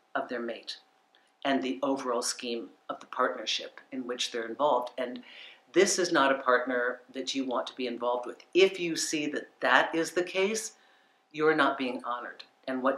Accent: American